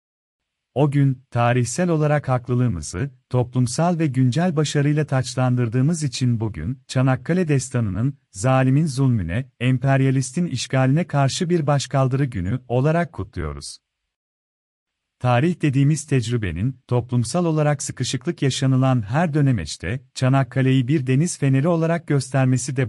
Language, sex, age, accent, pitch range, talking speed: Turkish, male, 40-59, native, 125-145 Hz, 105 wpm